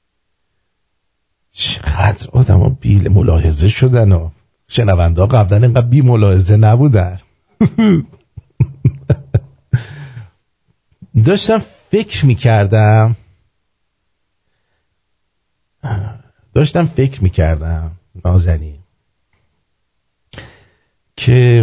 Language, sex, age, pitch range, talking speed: English, male, 50-69, 90-120 Hz, 60 wpm